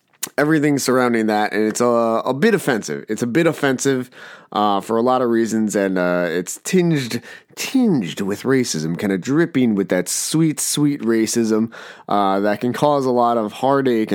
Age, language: 30-49, English